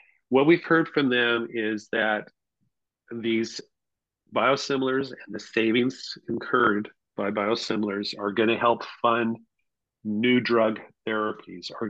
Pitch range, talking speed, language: 110-125 Hz, 120 wpm, English